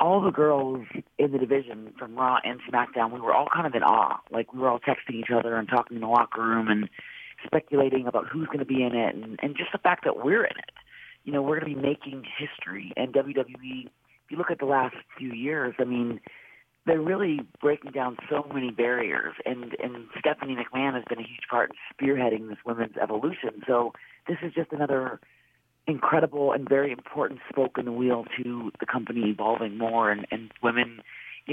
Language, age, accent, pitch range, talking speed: English, 40-59, American, 120-140 Hz, 210 wpm